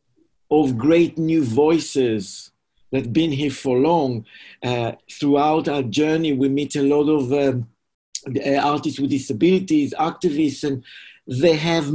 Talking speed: 135 wpm